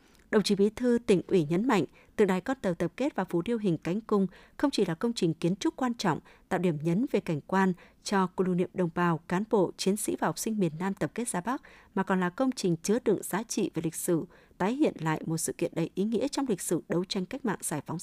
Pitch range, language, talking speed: 175-230 Hz, Vietnamese, 275 wpm